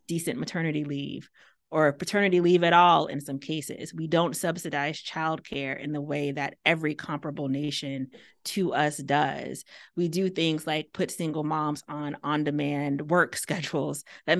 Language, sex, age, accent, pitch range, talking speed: English, female, 30-49, American, 145-170 Hz, 160 wpm